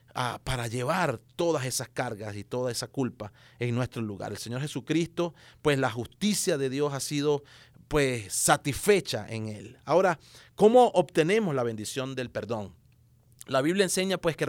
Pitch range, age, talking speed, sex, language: 120-165 Hz, 30-49, 150 wpm, male, English